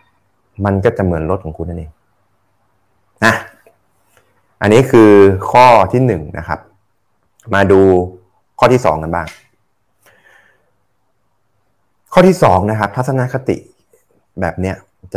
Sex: male